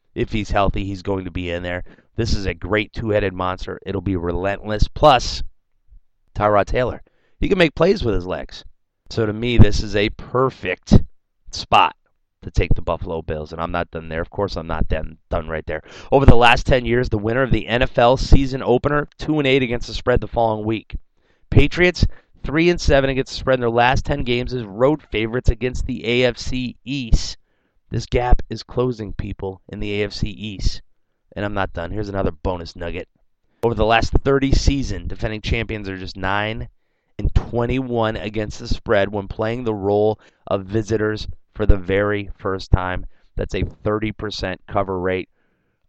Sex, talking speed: male, 185 wpm